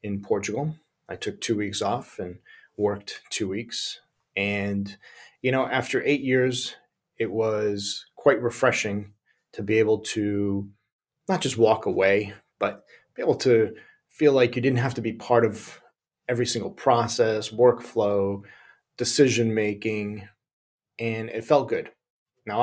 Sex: male